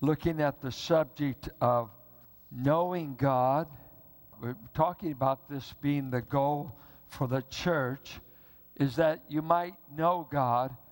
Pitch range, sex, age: 130-170 Hz, male, 60-79